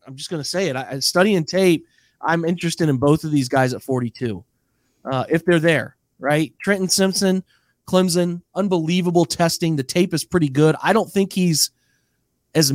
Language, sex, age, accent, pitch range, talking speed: English, male, 30-49, American, 140-180 Hz, 185 wpm